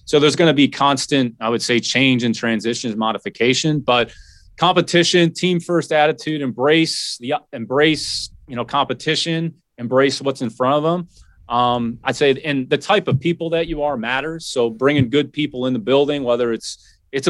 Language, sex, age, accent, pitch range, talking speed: English, male, 30-49, American, 120-150 Hz, 180 wpm